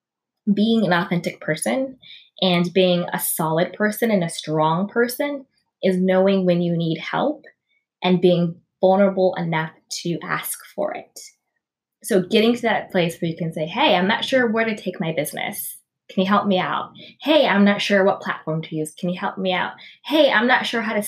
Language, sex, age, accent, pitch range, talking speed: English, female, 20-39, American, 175-210 Hz, 195 wpm